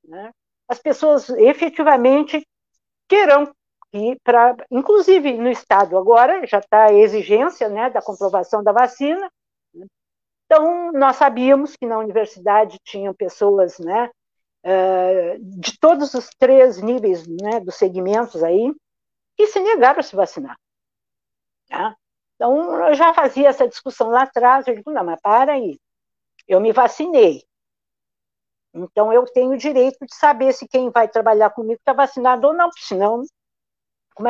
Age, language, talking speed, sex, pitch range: 60-79, Portuguese, 135 wpm, female, 205-285 Hz